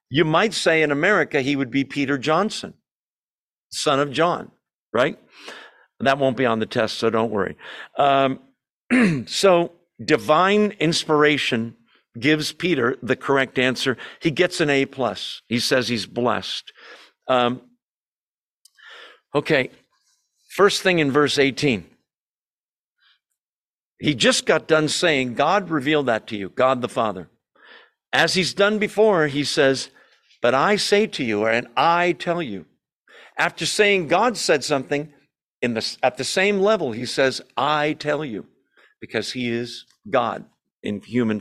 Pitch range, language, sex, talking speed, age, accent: 125-195 Hz, English, male, 140 wpm, 50-69, American